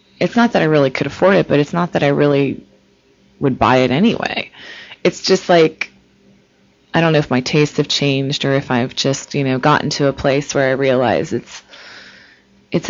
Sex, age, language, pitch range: female, 20-39, English, 135-155 Hz